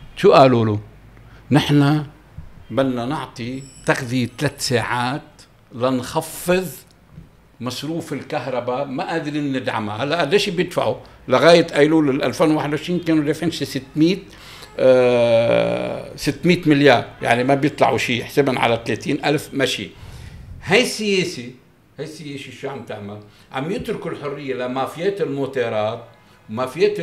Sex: male